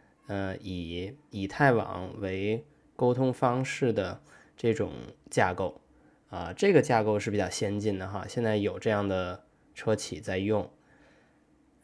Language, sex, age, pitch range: Chinese, male, 20-39, 105-130 Hz